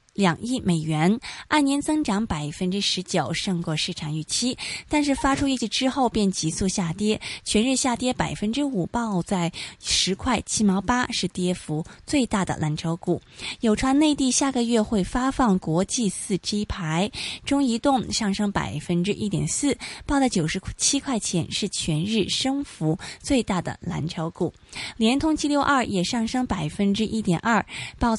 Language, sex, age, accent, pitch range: Chinese, female, 20-39, native, 175-255 Hz